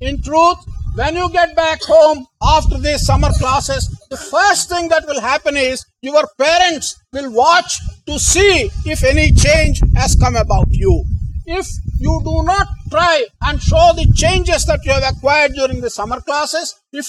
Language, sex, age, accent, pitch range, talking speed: English, male, 50-69, Indian, 270-335 Hz, 170 wpm